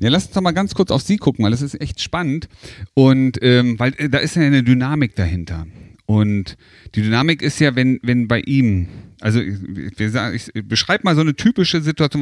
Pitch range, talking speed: 110-155 Hz, 215 wpm